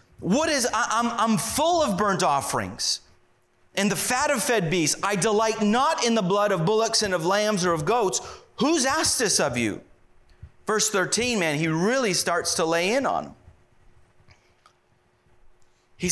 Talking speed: 170 wpm